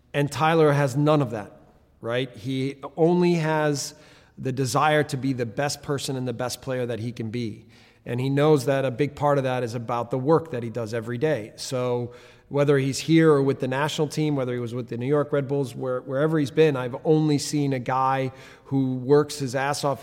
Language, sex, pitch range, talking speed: English, male, 130-150 Hz, 225 wpm